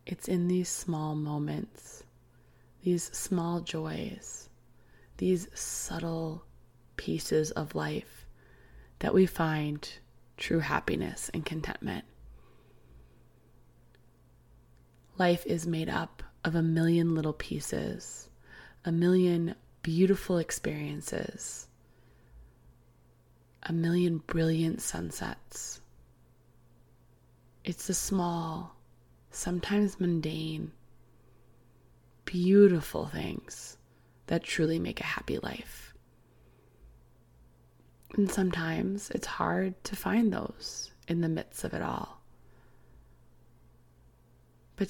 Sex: female